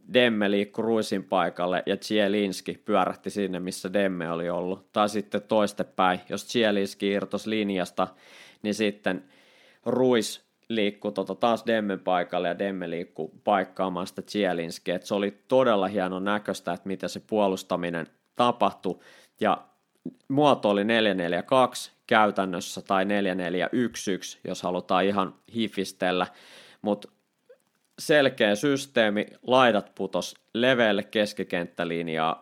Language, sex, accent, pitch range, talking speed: Finnish, male, native, 90-105 Hz, 110 wpm